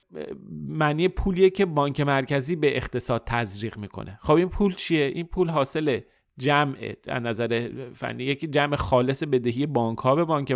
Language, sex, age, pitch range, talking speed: Persian, male, 30-49, 120-155 Hz, 160 wpm